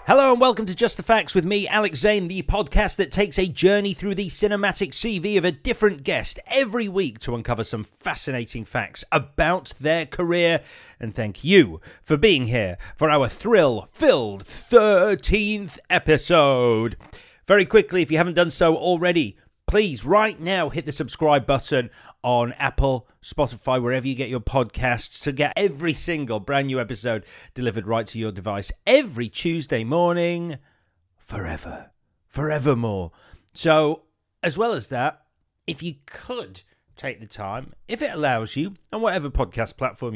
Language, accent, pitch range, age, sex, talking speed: English, British, 120-180 Hz, 30-49, male, 155 wpm